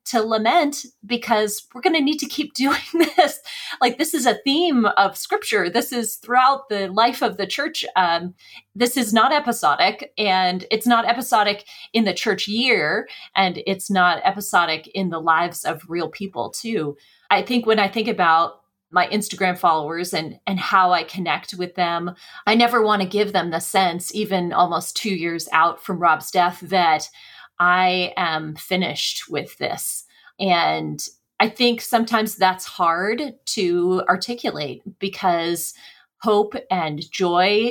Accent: American